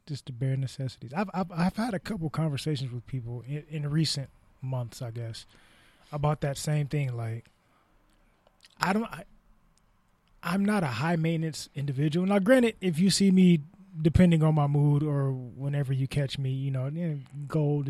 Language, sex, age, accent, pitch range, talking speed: English, male, 20-39, American, 125-155 Hz, 170 wpm